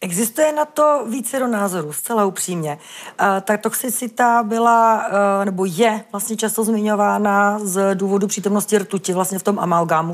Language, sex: Czech, female